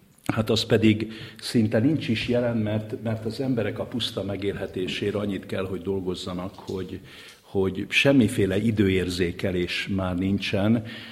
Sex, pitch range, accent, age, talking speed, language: male, 95-110 Hz, Finnish, 50-69, 130 wpm, English